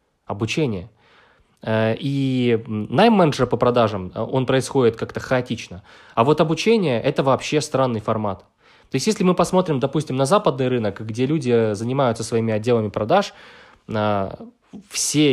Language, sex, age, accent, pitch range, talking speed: Ukrainian, male, 20-39, native, 115-155 Hz, 125 wpm